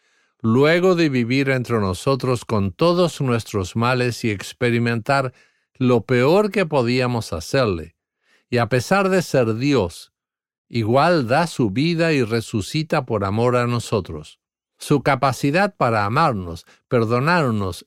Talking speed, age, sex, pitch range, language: 125 wpm, 50-69, male, 105-145 Hz, English